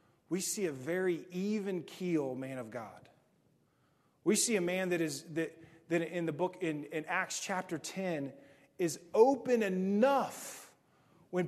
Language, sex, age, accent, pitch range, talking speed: English, male, 30-49, American, 145-200 Hz, 150 wpm